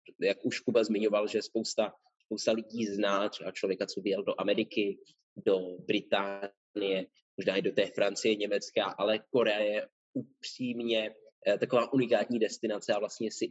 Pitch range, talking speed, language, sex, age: 105-150 Hz, 145 wpm, Czech, male, 20-39